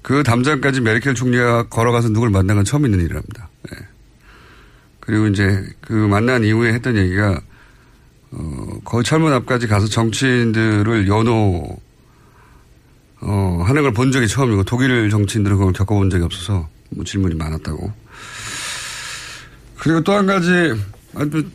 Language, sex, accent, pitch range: Korean, male, native, 100-135 Hz